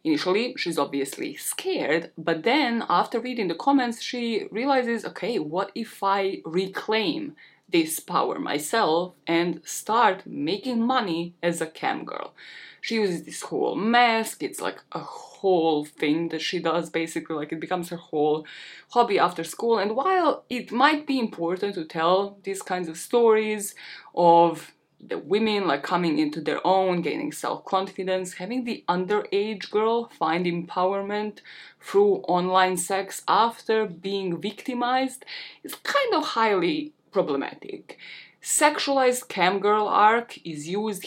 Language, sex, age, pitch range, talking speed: English, female, 20-39, 175-245 Hz, 140 wpm